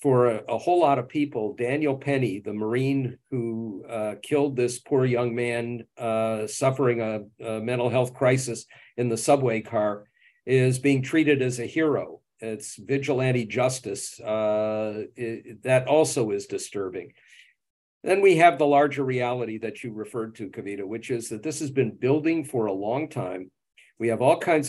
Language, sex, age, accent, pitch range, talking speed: English, male, 50-69, American, 115-140 Hz, 170 wpm